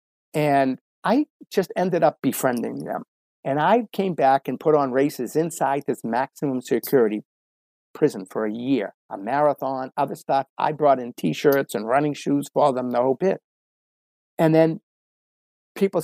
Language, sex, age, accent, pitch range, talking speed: English, male, 50-69, American, 130-185 Hz, 155 wpm